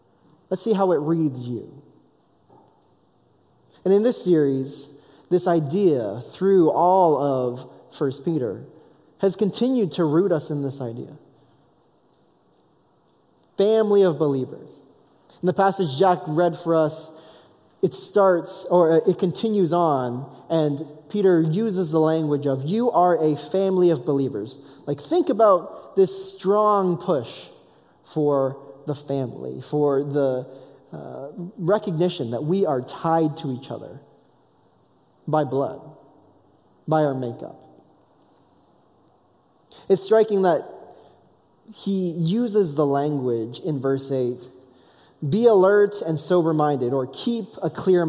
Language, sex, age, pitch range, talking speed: English, male, 20-39, 140-190 Hz, 120 wpm